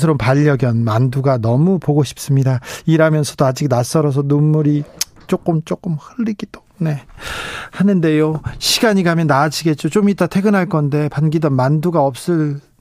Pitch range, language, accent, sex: 140-170 Hz, Korean, native, male